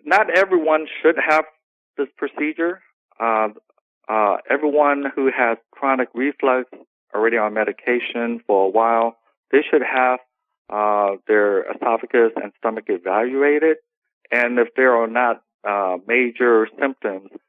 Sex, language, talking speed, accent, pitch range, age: male, English, 125 wpm, American, 115-150 Hz, 50-69